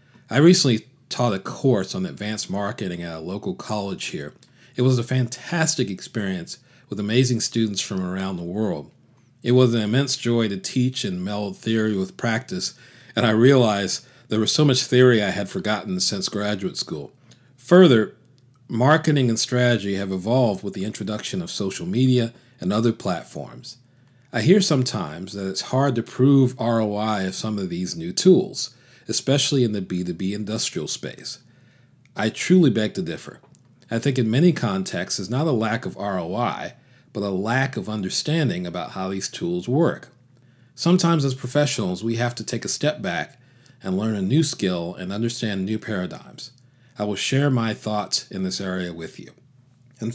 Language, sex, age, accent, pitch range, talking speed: English, male, 40-59, American, 105-135 Hz, 170 wpm